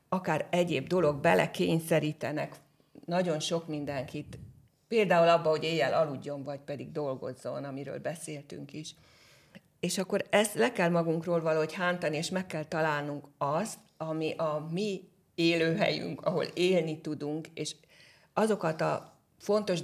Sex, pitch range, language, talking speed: female, 145-180 Hz, Hungarian, 130 wpm